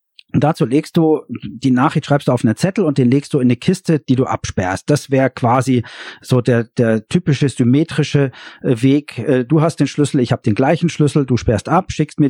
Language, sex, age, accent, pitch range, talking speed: German, male, 50-69, German, 125-165 Hz, 215 wpm